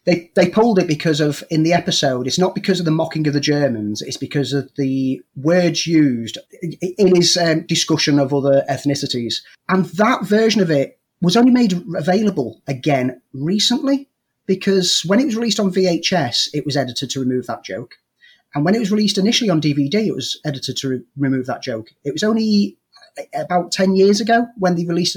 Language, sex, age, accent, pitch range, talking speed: English, male, 30-49, British, 135-185 Hz, 195 wpm